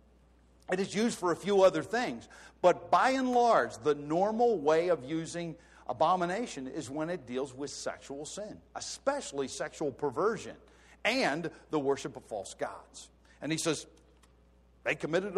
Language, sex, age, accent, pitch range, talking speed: English, male, 50-69, American, 125-190 Hz, 150 wpm